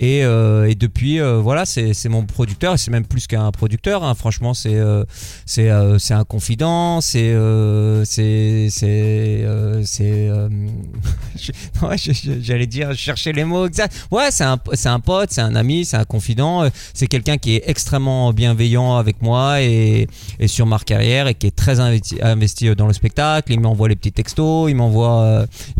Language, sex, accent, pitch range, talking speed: French, male, French, 110-130 Hz, 175 wpm